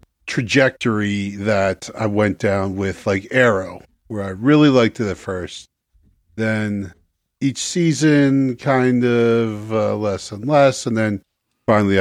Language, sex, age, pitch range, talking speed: English, male, 40-59, 100-125 Hz, 135 wpm